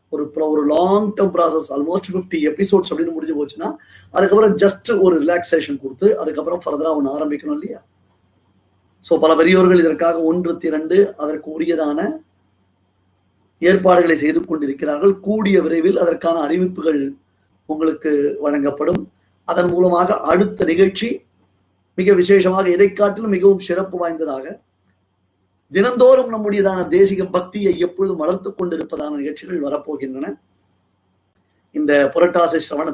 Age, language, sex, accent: 30-49, Tamil, male, native